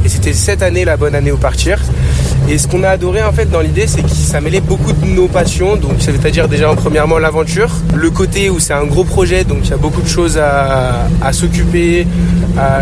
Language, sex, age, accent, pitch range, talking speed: French, male, 20-39, French, 75-90 Hz, 245 wpm